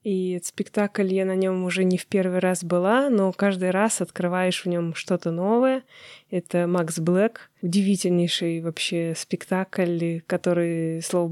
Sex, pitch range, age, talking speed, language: female, 175-210 Hz, 20-39, 150 wpm, Russian